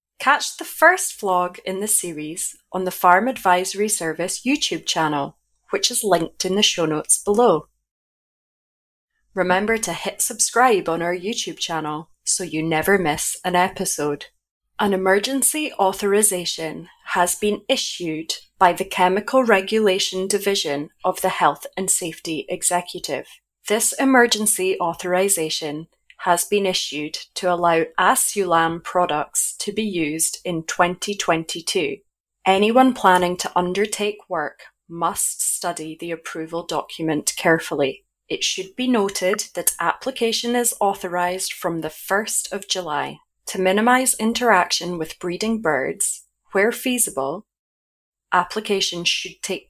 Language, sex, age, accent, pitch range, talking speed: English, female, 20-39, British, 170-210 Hz, 125 wpm